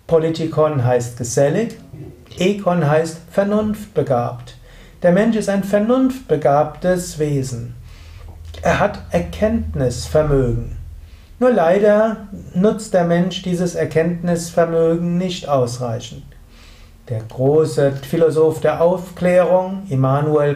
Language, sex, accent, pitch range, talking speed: German, male, German, 130-185 Hz, 90 wpm